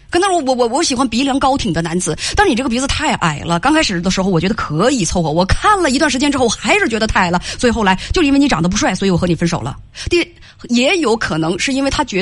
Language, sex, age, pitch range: Chinese, female, 20-39, 195-300 Hz